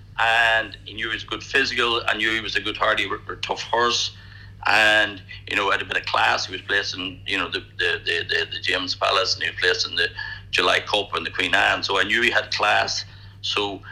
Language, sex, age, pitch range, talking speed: English, male, 60-79, 100-110 Hz, 245 wpm